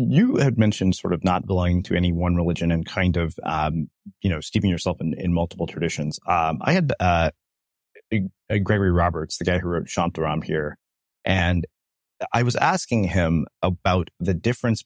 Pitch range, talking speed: 80-100 Hz, 175 wpm